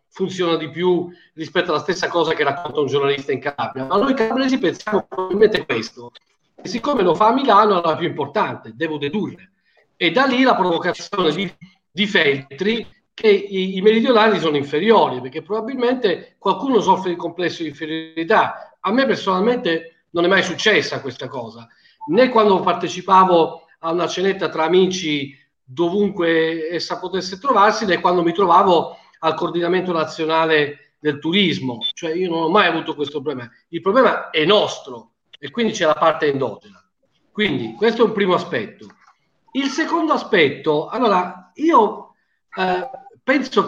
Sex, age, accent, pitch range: male, 40-59, native, 160-220 Hz